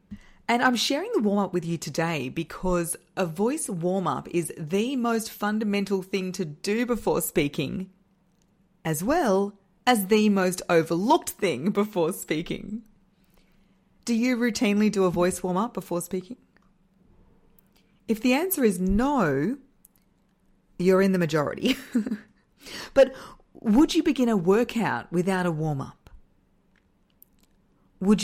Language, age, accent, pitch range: English, 40-59, Australian, 175-225 Hz